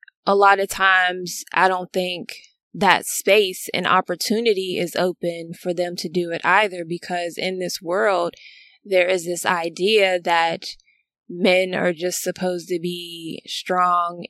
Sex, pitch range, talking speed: female, 170-190 Hz, 145 wpm